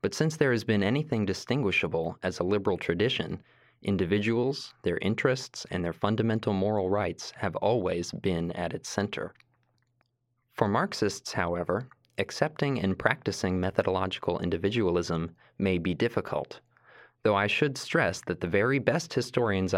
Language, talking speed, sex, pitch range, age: English, 135 wpm, male, 85-120 Hz, 20-39